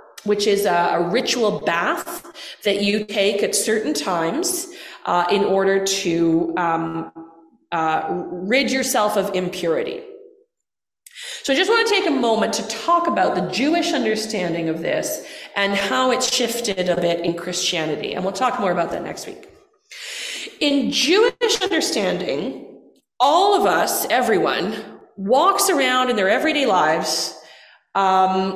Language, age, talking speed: English, 30-49, 145 wpm